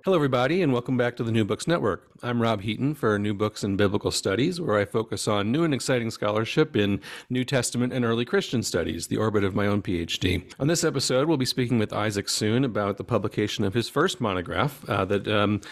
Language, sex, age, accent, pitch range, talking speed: English, male, 40-59, American, 105-130 Hz, 225 wpm